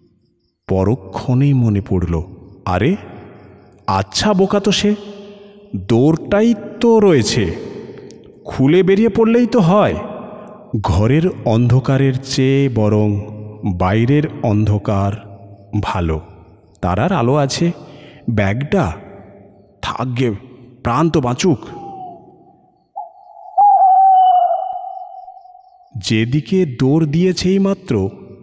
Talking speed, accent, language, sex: 70 wpm, native, Bengali, male